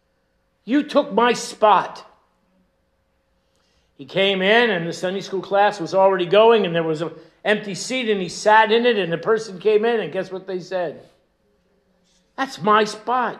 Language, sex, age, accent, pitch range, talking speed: English, male, 60-79, American, 140-205 Hz, 175 wpm